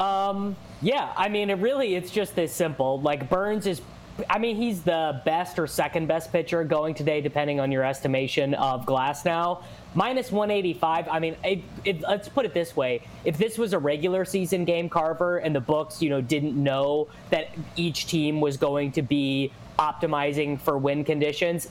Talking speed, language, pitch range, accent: 180 wpm, English, 140-185 Hz, American